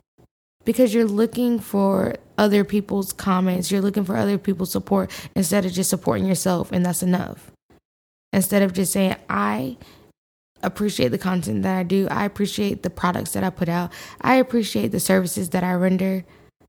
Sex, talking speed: female, 170 wpm